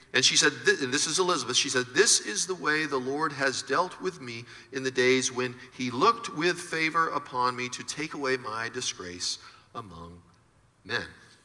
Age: 50-69